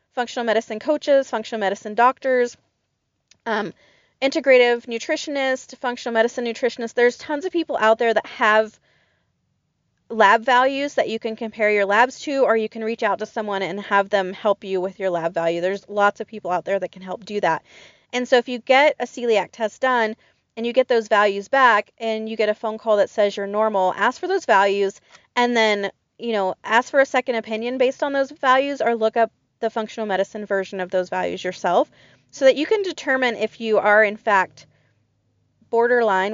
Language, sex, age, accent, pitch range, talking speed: English, female, 30-49, American, 200-245 Hz, 200 wpm